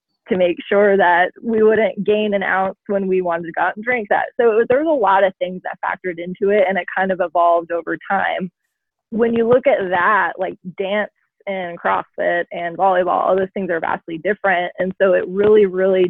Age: 20-39